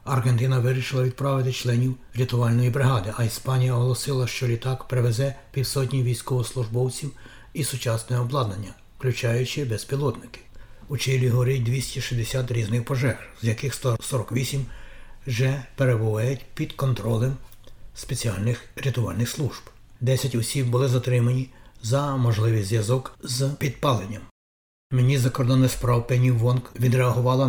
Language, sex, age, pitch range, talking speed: Ukrainian, male, 60-79, 115-130 Hz, 110 wpm